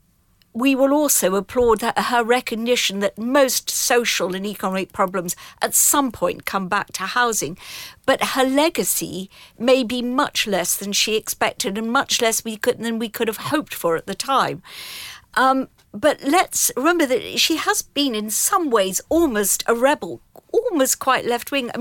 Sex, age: female, 50-69